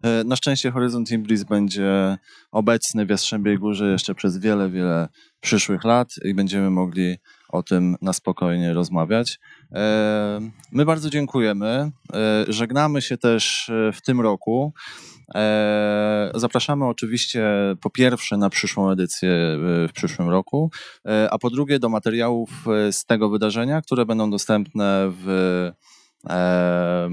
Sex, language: male, Polish